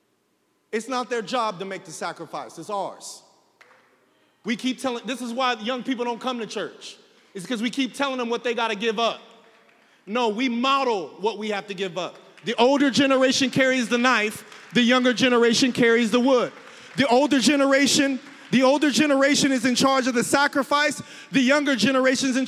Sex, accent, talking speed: male, American, 190 wpm